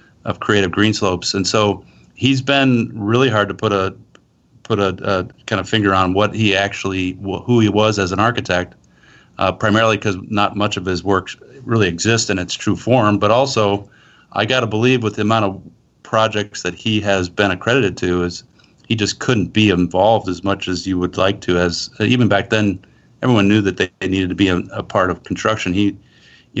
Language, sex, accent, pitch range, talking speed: English, male, American, 100-110 Hz, 210 wpm